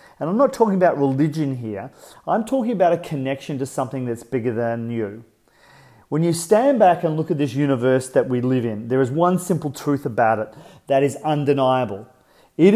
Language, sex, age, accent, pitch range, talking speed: English, male, 40-59, Australian, 120-160 Hz, 200 wpm